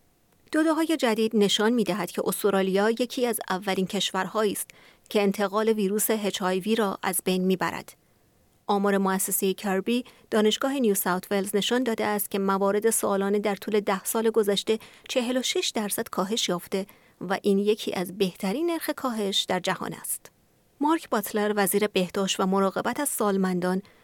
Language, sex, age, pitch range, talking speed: Persian, female, 30-49, 190-225 Hz, 150 wpm